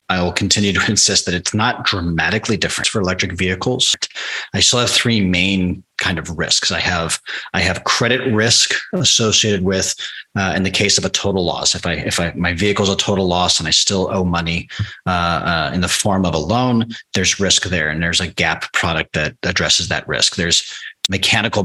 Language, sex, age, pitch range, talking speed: English, male, 30-49, 90-115 Hz, 205 wpm